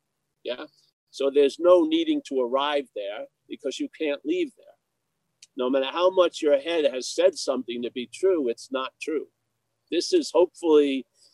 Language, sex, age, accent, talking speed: English, male, 50-69, American, 165 wpm